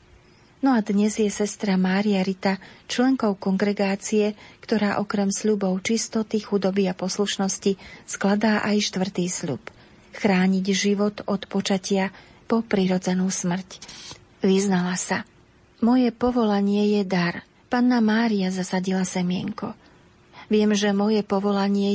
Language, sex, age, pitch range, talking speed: Slovak, female, 40-59, 190-215 Hz, 110 wpm